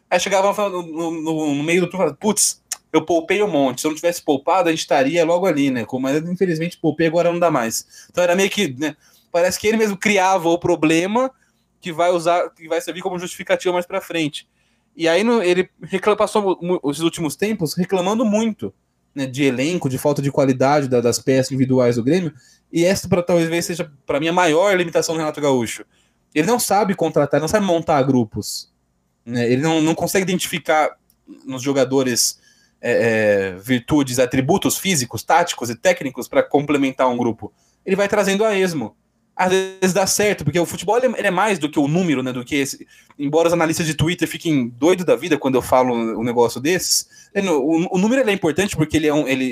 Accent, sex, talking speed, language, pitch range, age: Brazilian, male, 205 wpm, Portuguese, 140-190 Hz, 20-39